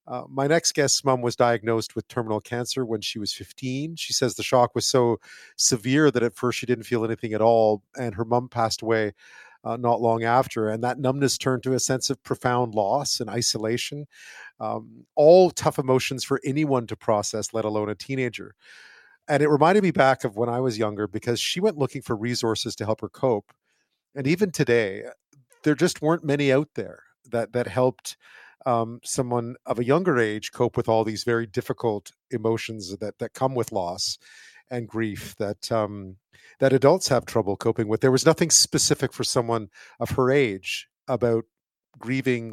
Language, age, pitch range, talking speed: English, 40-59, 110-135 Hz, 190 wpm